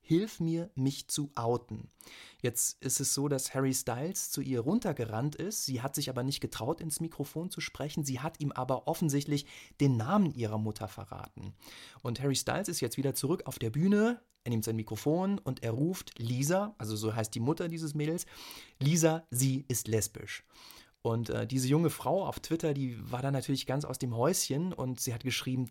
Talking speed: 195 wpm